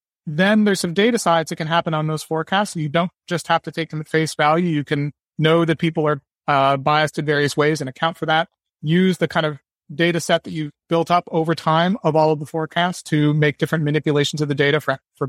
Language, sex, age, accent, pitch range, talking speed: English, male, 30-49, American, 150-180 Hz, 250 wpm